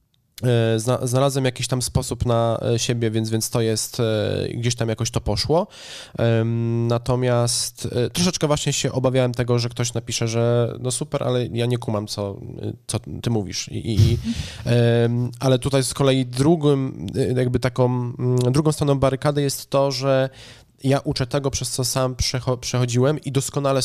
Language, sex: Polish, male